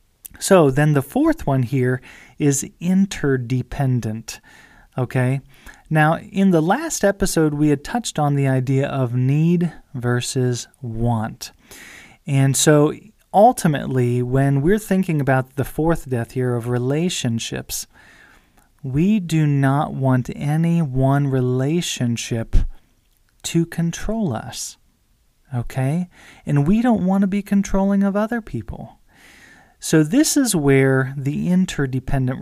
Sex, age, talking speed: male, 30-49, 120 wpm